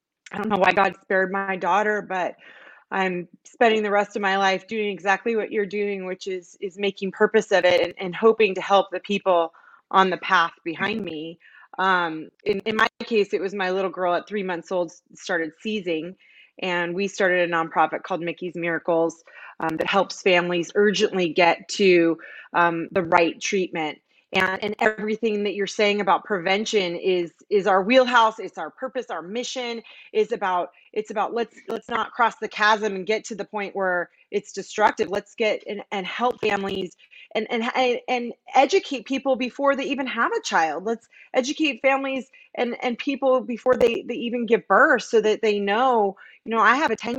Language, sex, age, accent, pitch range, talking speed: English, female, 20-39, American, 185-230 Hz, 190 wpm